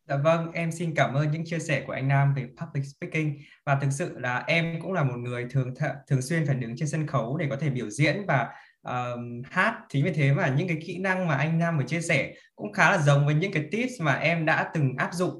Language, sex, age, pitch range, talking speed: Vietnamese, male, 20-39, 135-170 Hz, 270 wpm